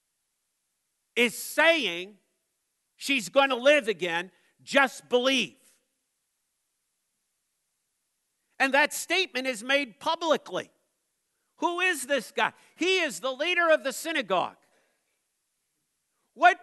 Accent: American